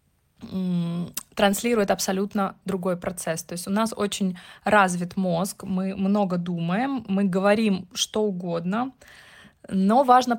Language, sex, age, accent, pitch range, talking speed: Ukrainian, female, 20-39, native, 185-220 Hz, 115 wpm